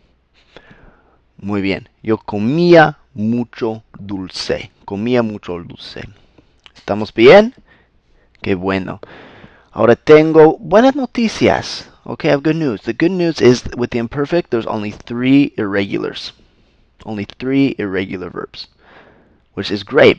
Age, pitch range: 30-49, 95-125 Hz